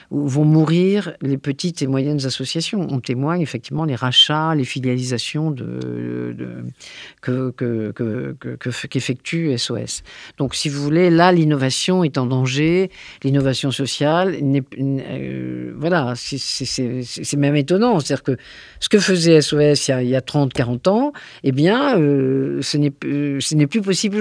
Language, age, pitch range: French, 50-69, 135-180 Hz